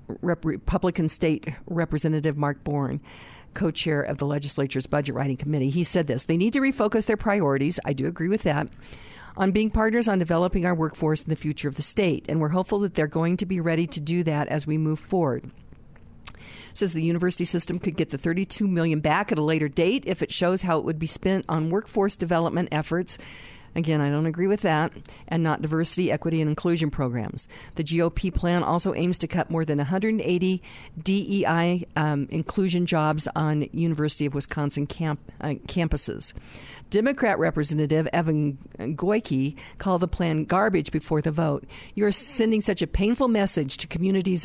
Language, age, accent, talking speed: English, 50-69, American, 180 wpm